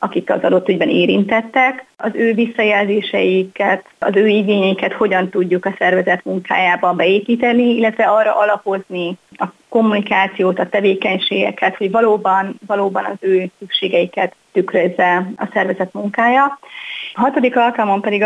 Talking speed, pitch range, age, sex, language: 125 wpm, 190-220 Hz, 30-49, female, Hungarian